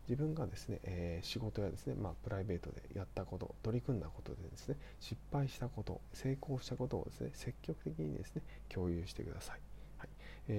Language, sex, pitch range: Japanese, male, 95-125 Hz